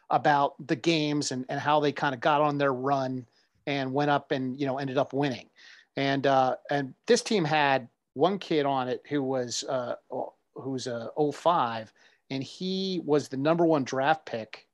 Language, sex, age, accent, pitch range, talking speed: English, male, 40-59, American, 130-155 Hz, 185 wpm